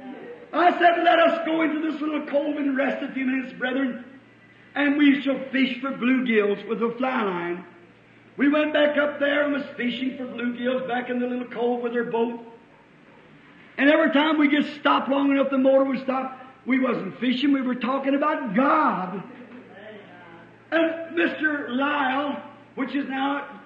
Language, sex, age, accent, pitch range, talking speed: English, male, 50-69, American, 250-295 Hz, 175 wpm